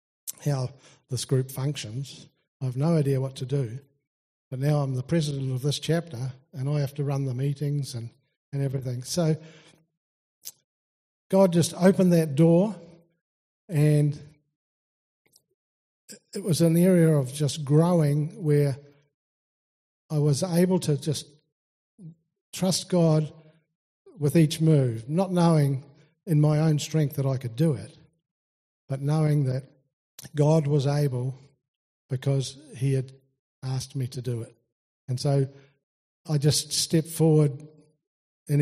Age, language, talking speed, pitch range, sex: 50-69, English, 135 wpm, 135-155 Hz, male